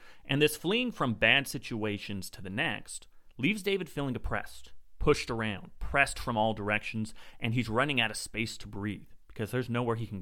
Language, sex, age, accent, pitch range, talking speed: English, male, 30-49, American, 100-130 Hz, 190 wpm